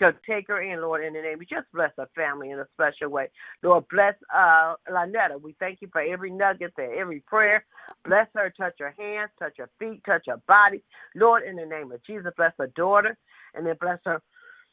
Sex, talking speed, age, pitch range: female, 225 wpm, 50-69, 165-220 Hz